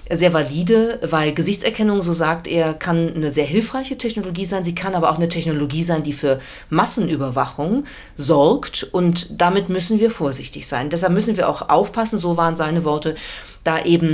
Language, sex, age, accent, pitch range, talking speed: German, female, 40-59, German, 155-195 Hz, 175 wpm